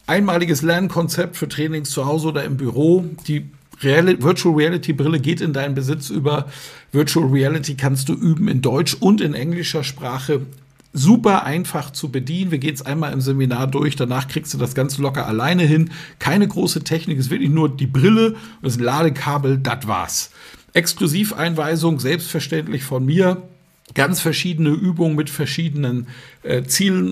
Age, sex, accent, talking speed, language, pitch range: 50-69, male, German, 155 wpm, German, 135-165 Hz